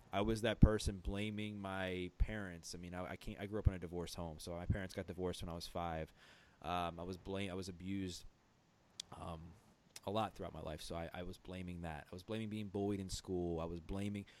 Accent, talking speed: American, 235 wpm